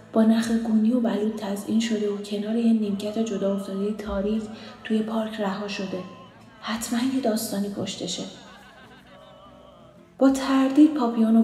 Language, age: Persian, 30-49